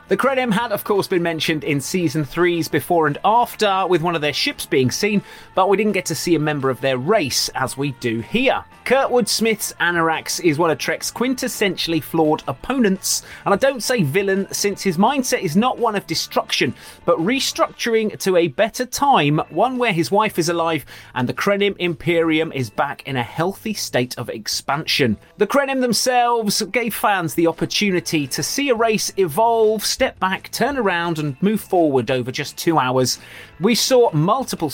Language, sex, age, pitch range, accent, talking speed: English, male, 30-49, 140-215 Hz, British, 185 wpm